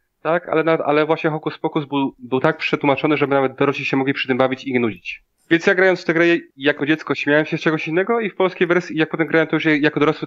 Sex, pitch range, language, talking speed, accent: male, 130-160 Hz, Polish, 270 wpm, native